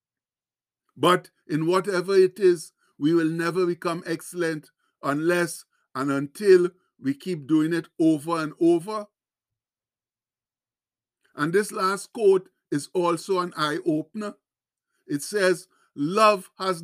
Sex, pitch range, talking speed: male, 160-195 Hz, 115 wpm